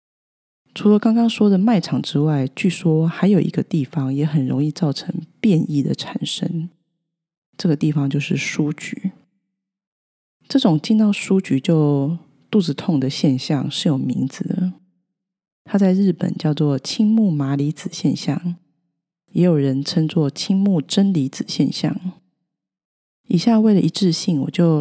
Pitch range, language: 150-190 Hz, Chinese